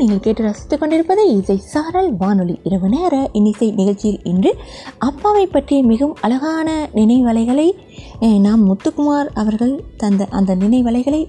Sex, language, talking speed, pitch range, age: female, Tamil, 120 wpm, 195-285 Hz, 20-39